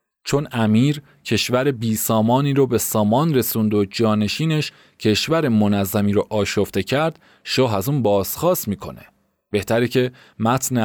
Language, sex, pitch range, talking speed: Persian, male, 110-140 Hz, 135 wpm